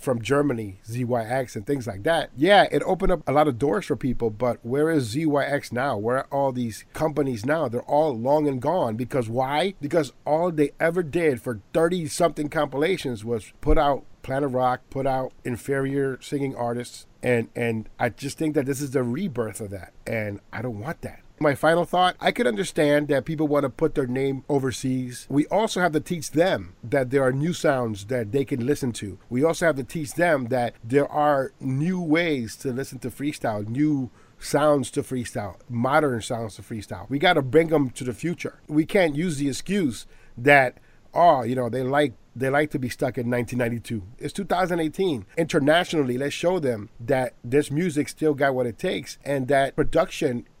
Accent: American